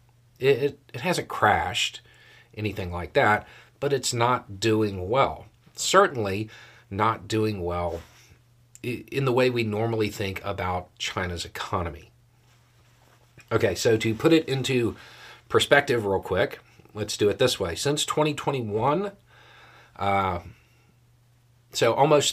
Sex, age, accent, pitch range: male, 40-59, American, 100-120 Hz